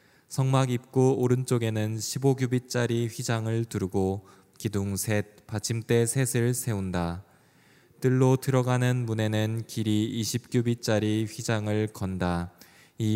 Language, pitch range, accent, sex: Korean, 105-125 Hz, native, male